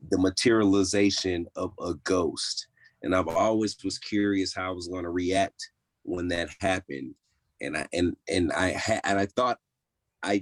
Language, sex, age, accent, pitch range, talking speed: English, male, 30-49, American, 95-120 Hz, 165 wpm